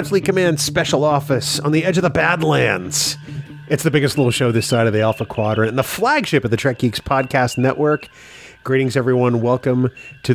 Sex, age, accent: male, 30-49, American